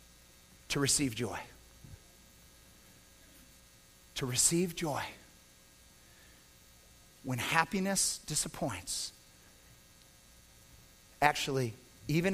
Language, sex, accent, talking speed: English, male, American, 55 wpm